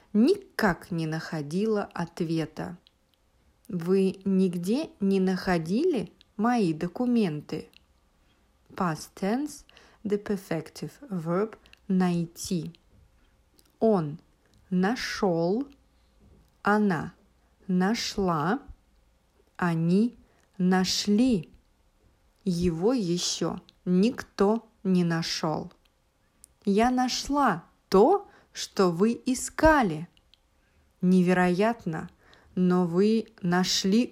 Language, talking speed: English, 65 wpm